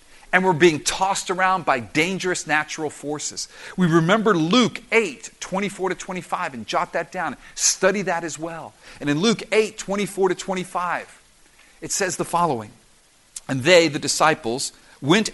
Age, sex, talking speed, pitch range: 50-69, male, 155 wpm, 125-205 Hz